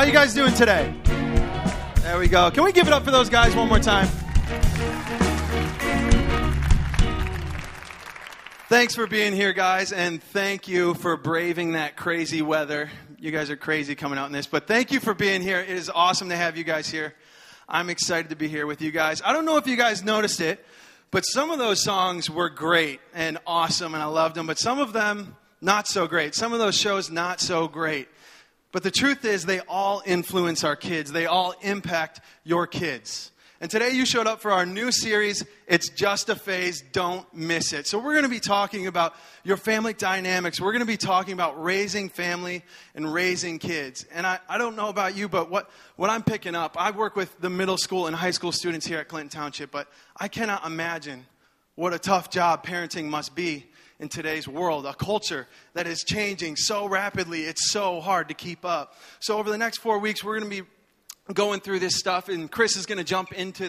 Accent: American